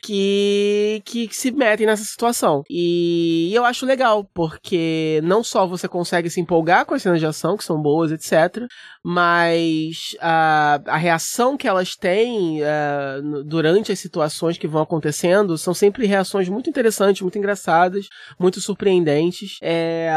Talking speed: 145 wpm